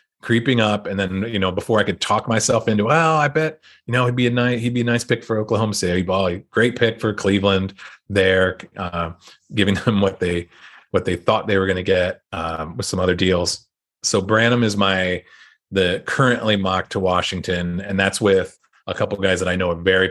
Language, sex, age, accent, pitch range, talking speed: English, male, 30-49, American, 90-110 Hz, 225 wpm